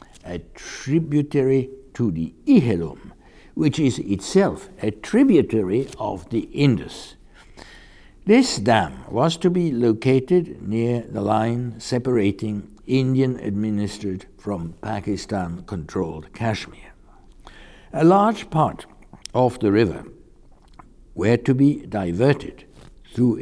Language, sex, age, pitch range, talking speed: English, male, 60-79, 100-140 Hz, 95 wpm